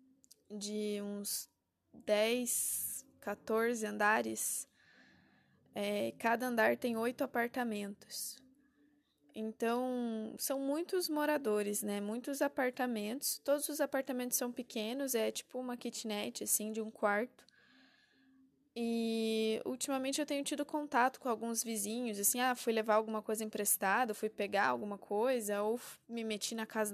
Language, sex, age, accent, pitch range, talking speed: Portuguese, female, 10-29, Brazilian, 205-255 Hz, 125 wpm